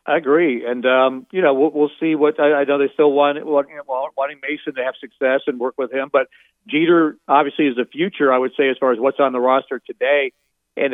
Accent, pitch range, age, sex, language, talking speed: American, 125-145 Hz, 50-69, male, English, 235 wpm